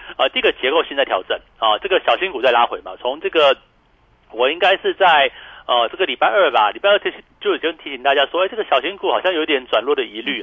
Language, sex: Chinese, male